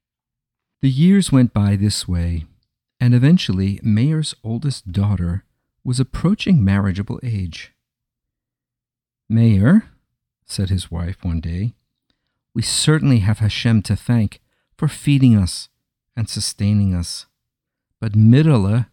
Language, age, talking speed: English, 50-69, 110 wpm